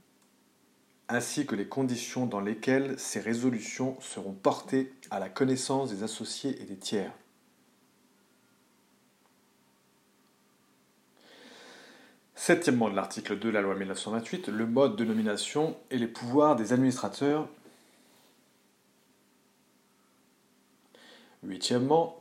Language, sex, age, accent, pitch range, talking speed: English, male, 40-59, French, 105-145 Hz, 95 wpm